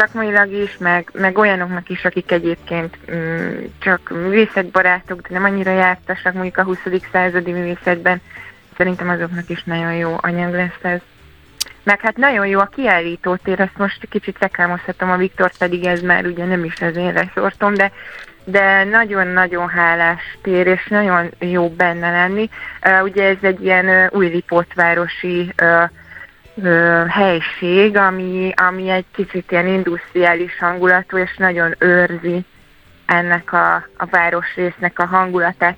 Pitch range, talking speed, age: 175-185 Hz, 145 wpm, 20-39